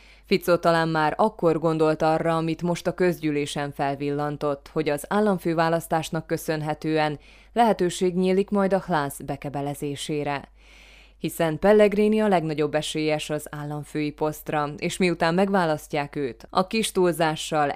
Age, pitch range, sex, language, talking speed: 20-39, 145-175 Hz, female, Hungarian, 120 wpm